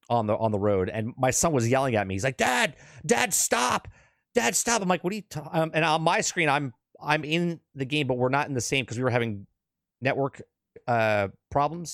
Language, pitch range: English, 110-155 Hz